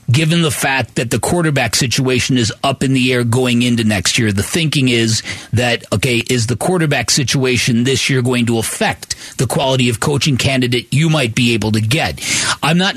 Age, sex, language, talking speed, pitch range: 40-59, male, English, 200 wpm, 120-160 Hz